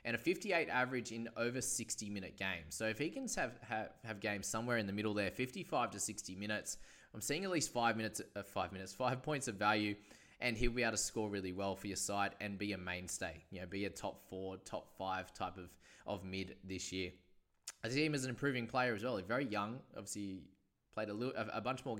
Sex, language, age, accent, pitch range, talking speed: male, English, 20-39, Australian, 95-120 Hz, 235 wpm